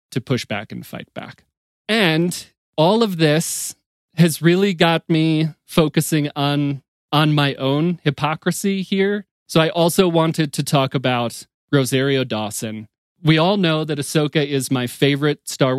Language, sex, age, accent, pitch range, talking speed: English, male, 30-49, American, 130-160 Hz, 150 wpm